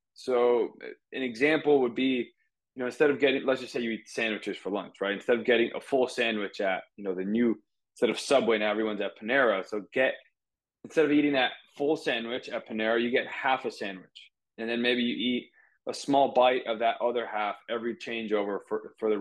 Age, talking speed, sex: 20-39, 215 wpm, male